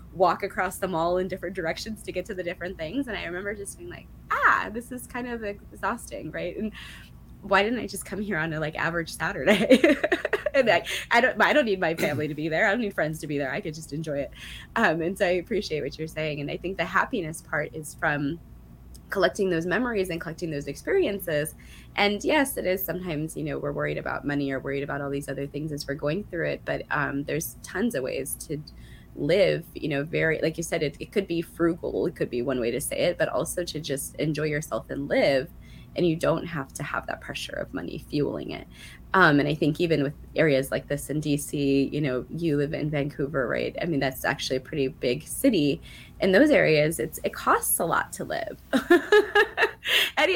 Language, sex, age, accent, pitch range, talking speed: English, female, 20-39, American, 145-195 Hz, 230 wpm